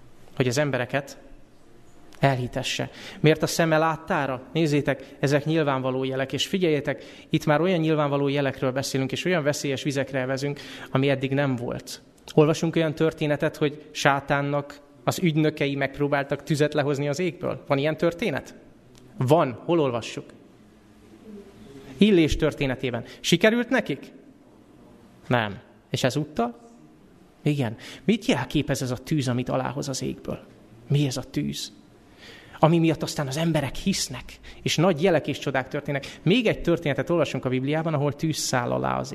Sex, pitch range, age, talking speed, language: male, 130-155 Hz, 30-49, 140 wpm, Hungarian